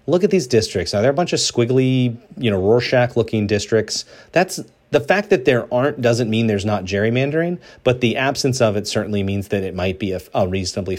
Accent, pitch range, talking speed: American, 100-130 Hz, 220 wpm